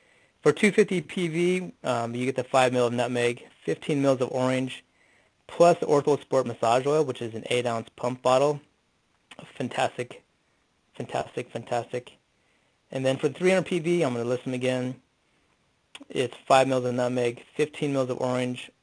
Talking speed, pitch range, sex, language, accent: 160 wpm, 120-145 Hz, male, English, American